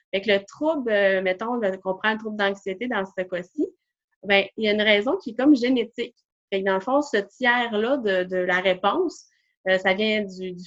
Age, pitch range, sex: 20-39, 195-255 Hz, female